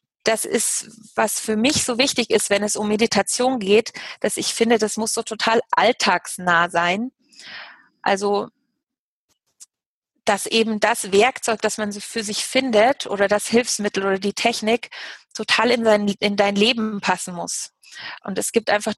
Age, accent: 30-49, German